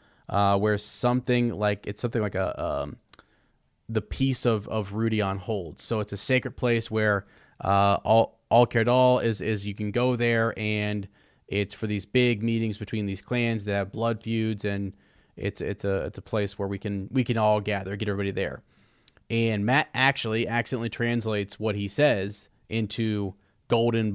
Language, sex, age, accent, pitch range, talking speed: English, male, 30-49, American, 100-120 Hz, 180 wpm